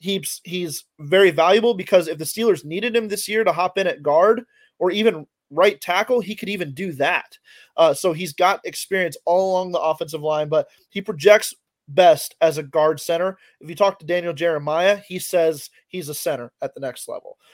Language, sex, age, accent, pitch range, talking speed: English, male, 20-39, American, 150-190 Hz, 200 wpm